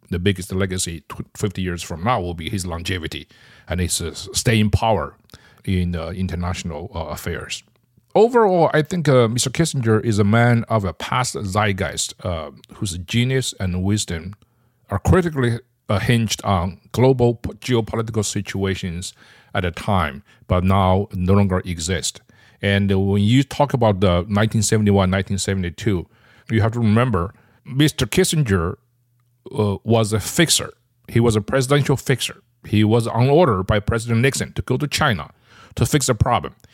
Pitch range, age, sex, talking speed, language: 95-120 Hz, 50-69, male, 145 wpm, English